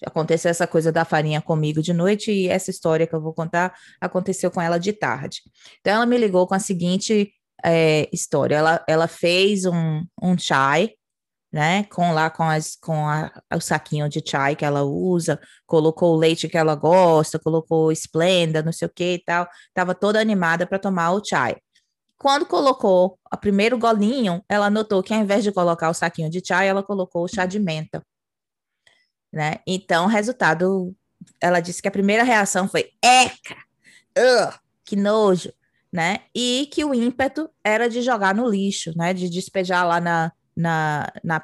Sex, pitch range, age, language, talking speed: female, 165-210 Hz, 20-39, Portuguese, 180 wpm